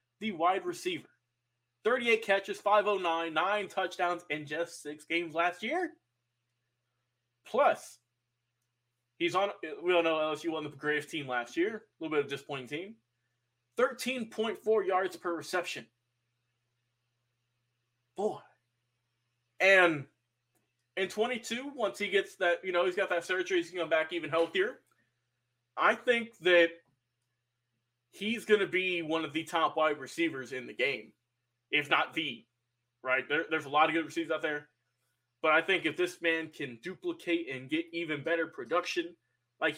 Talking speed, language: 150 wpm, English